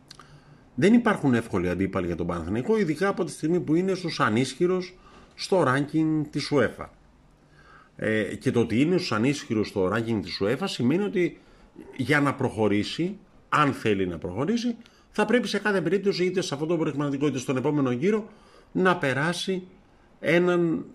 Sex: male